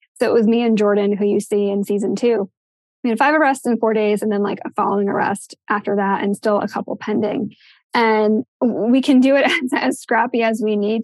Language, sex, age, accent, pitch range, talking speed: English, female, 20-39, American, 205-235 Hz, 235 wpm